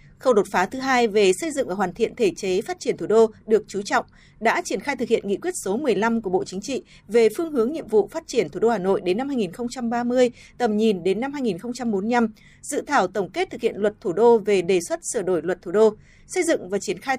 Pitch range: 200-255 Hz